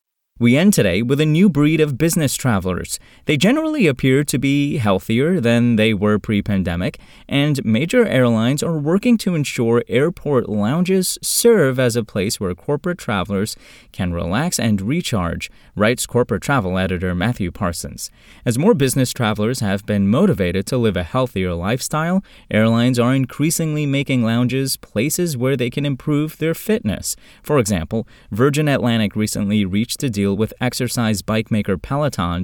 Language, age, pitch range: English, 20-39, 100-140 Hz